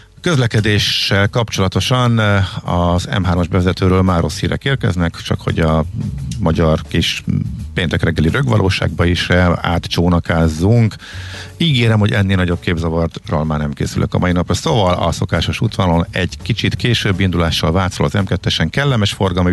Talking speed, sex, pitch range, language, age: 130 wpm, male, 85-105 Hz, Hungarian, 50-69